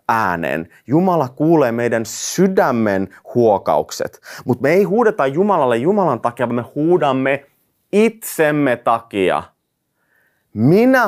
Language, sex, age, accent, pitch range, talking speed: Finnish, male, 30-49, native, 130-200 Hz, 105 wpm